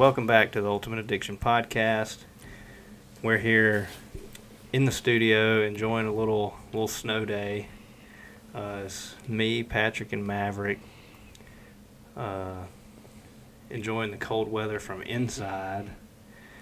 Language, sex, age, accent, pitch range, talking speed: English, male, 30-49, American, 100-115 Hz, 110 wpm